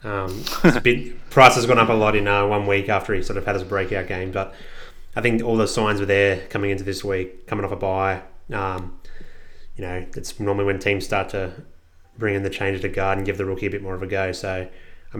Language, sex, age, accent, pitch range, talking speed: English, male, 20-39, Australian, 95-105 Hz, 255 wpm